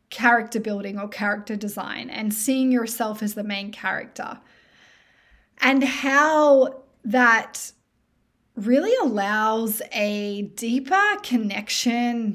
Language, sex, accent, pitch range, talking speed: English, female, Australian, 220-260 Hz, 95 wpm